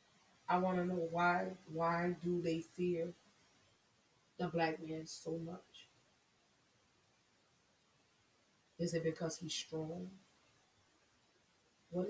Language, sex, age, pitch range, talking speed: English, female, 30-49, 165-185 Hz, 100 wpm